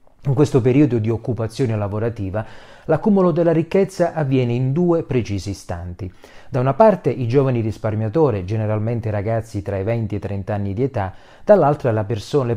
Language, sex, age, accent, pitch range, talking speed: Italian, male, 30-49, native, 100-125 Hz, 160 wpm